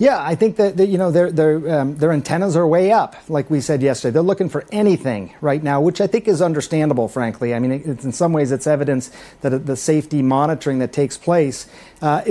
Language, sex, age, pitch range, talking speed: English, male, 40-59, 140-165 Hz, 225 wpm